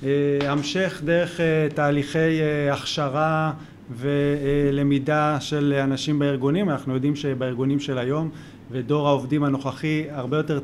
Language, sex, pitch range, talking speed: Hebrew, male, 130-155 Hz, 125 wpm